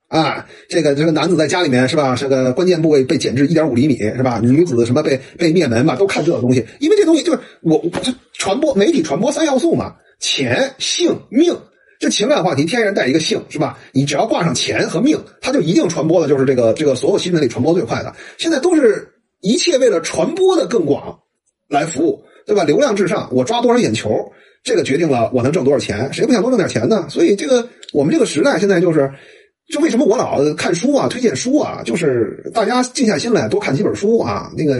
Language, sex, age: Chinese, male, 30-49